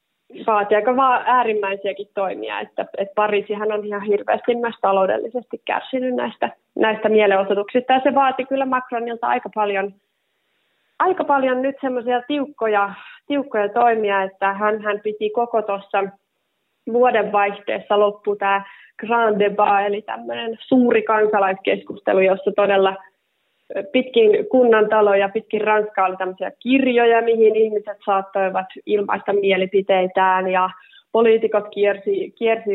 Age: 30-49